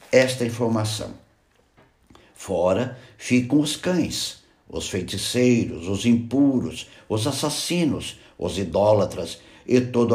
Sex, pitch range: male, 100-130 Hz